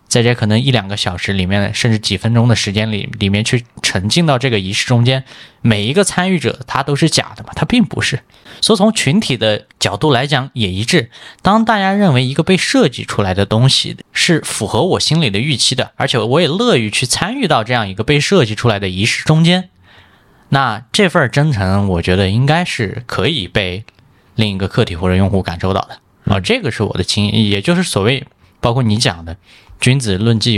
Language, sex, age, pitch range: Chinese, male, 20-39, 105-145 Hz